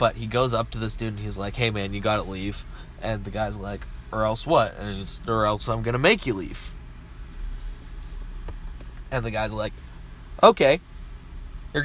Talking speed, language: 185 wpm, English